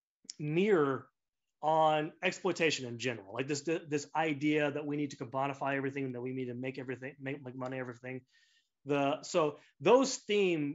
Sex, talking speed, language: male, 155 wpm, English